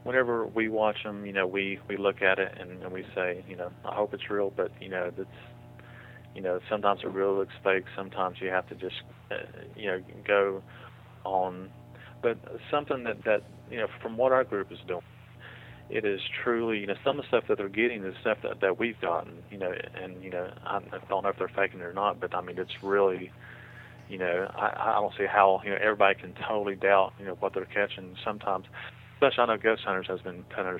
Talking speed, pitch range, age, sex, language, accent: 220 wpm, 90-105 Hz, 40-59, male, English, American